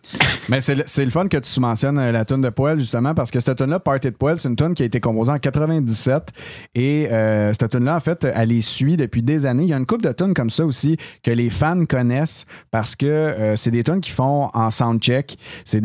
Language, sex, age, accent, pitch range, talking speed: French, male, 30-49, Canadian, 115-145 Hz, 260 wpm